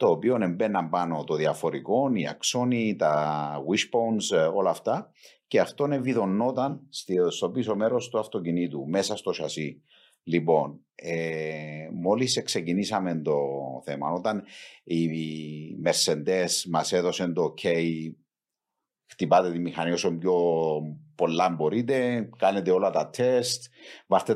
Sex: male